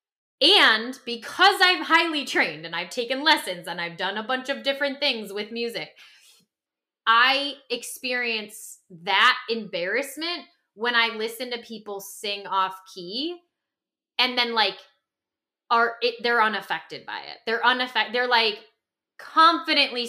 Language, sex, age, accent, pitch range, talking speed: English, female, 10-29, American, 225-305 Hz, 130 wpm